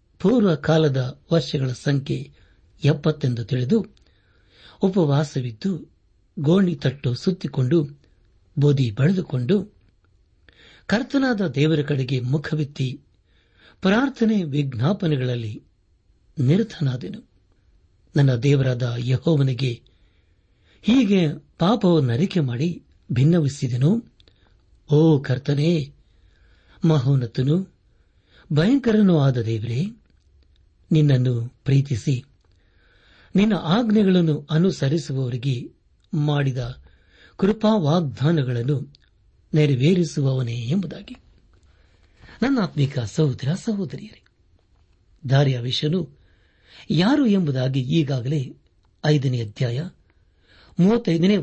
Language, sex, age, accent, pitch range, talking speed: Kannada, male, 60-79, native, 110-165 Hz, 60 wpm